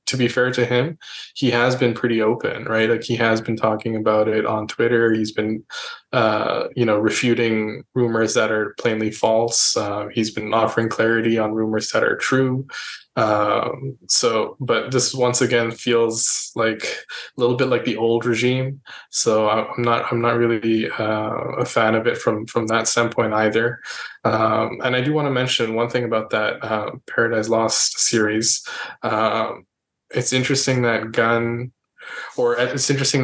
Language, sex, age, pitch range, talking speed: English, male, 20-39, 110-120 Hz, 170 wpm